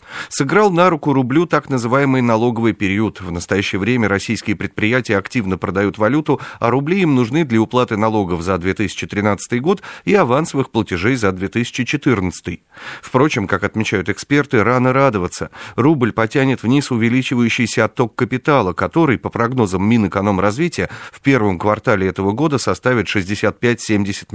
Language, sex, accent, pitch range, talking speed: Russian, male, native, 100-125 Hz, 135 wpm